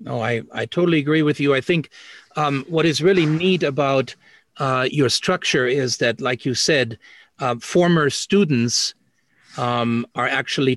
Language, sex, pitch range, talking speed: English, male, 115-140 Hz, 160 wpm